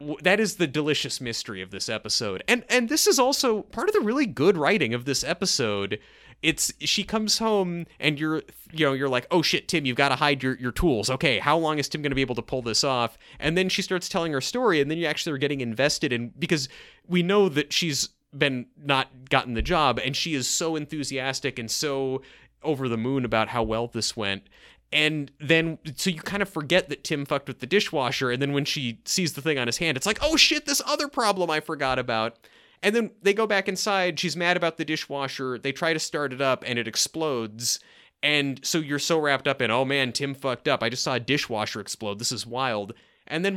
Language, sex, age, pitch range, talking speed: English, male, 30-49, 130-170 Hz, 235 wpm